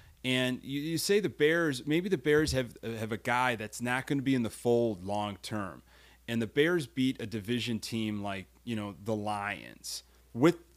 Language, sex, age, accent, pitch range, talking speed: English, male, 30-49, American, 115-165 Hz, 200 wpm